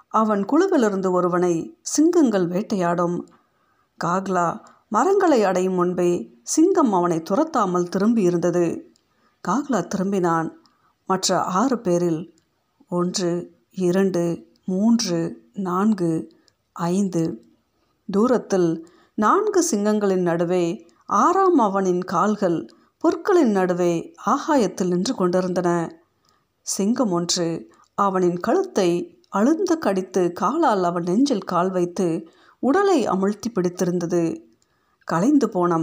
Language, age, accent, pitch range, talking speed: Tamil, 50-69, native, 175-235 Hz, 85 wpm